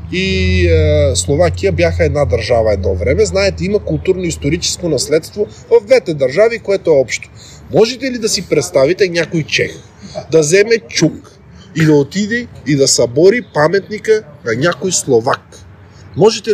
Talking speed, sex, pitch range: 140 wpm, male, 120-190 Hz